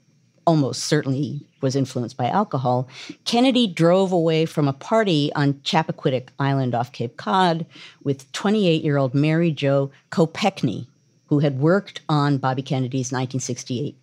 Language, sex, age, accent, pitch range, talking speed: English, female, 50-69, American, 140-180 Hz, 130 wpm